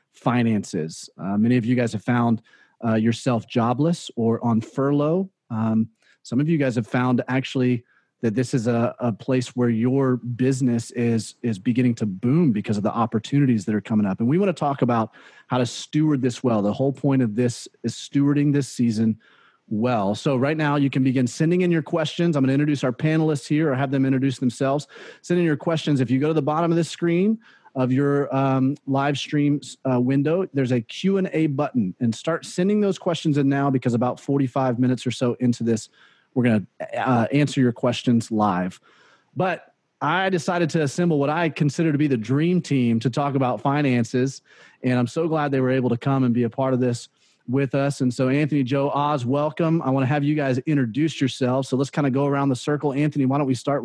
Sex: male